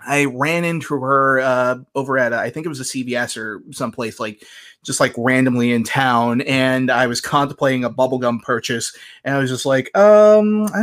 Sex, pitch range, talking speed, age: male, 130-175 Hz, 200 wpm, 20-39